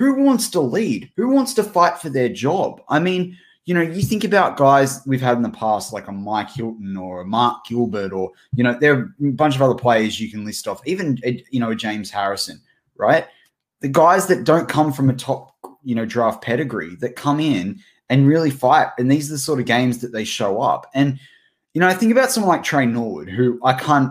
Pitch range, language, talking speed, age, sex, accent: 105-140 Hz, English, 235 wpm, 20-39, male, Australian